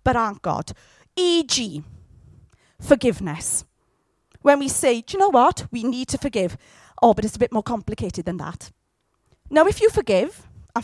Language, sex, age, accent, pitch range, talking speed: English, female, 30-49, British, 205-330 Hz, 165 wpm